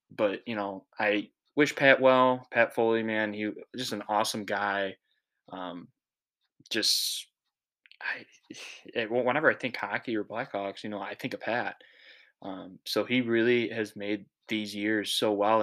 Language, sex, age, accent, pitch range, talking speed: English, male, 10-29, American, 100-115 Hz, 155 wpm